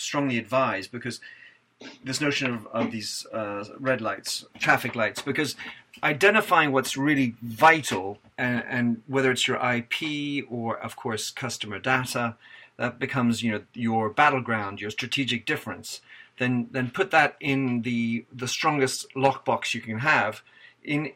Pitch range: 115-145 Hz